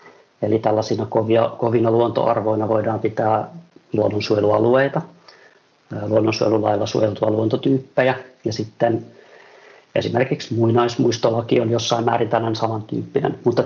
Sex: male